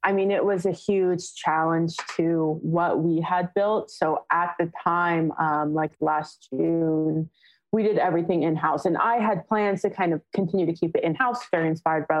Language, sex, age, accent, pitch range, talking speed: English, female, 20-39, American, 165-195 Hz, 190 wpm